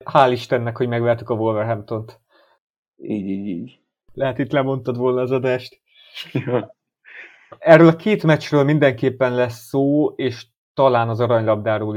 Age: 30-49